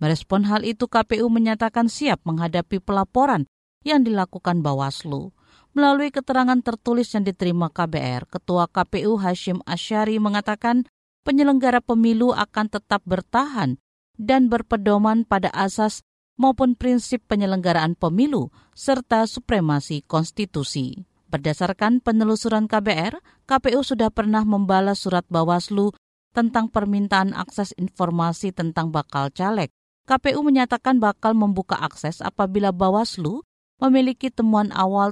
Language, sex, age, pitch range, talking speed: Indonesian, female, 50-69, 175-235 Hz, 110 wpm